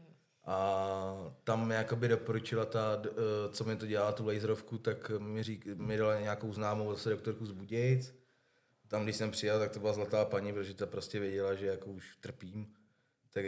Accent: native